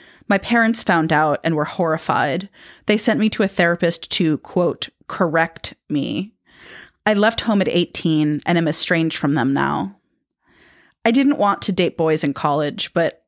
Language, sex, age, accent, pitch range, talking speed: English, female, 30-49, American, 155-190 Hz, 165 wpm